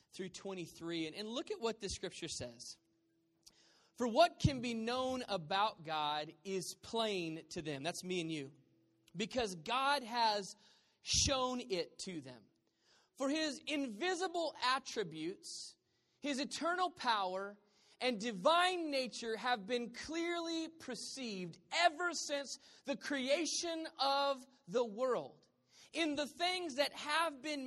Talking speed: 130 wpm